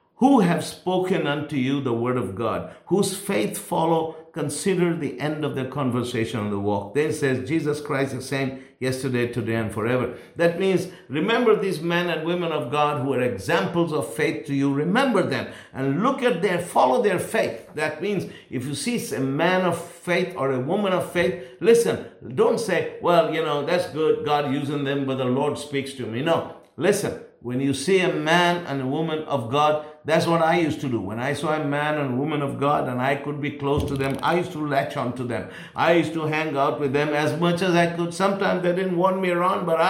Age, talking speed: 50-69, 225 wpm